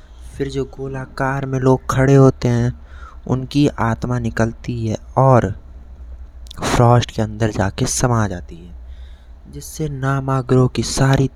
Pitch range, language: 85-130 Hz, Hindi